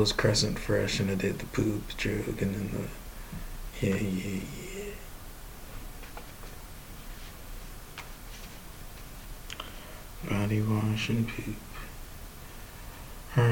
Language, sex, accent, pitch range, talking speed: English, male, American, 110-125 Hz, 90 wpm